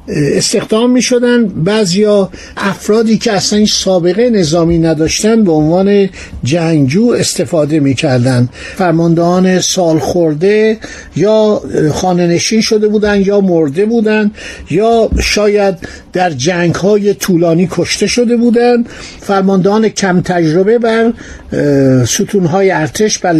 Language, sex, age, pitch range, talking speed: Persian, male, 60-79, 170-215 Hz, 115 wpm